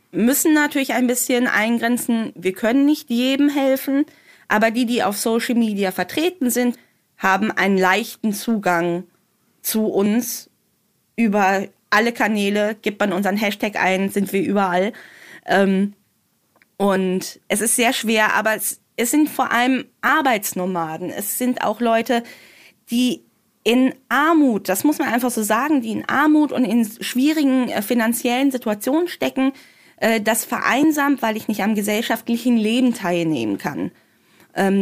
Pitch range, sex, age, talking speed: 195-245 Hz, female, 20-39, 135 wpm